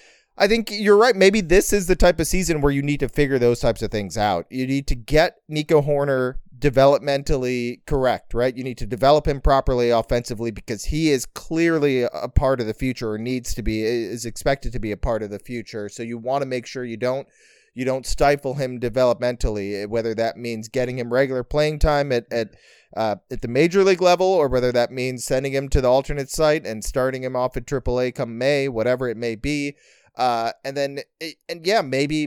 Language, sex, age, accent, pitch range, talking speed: English, male, 30-49, American, 120-145 Hz, 220 wpm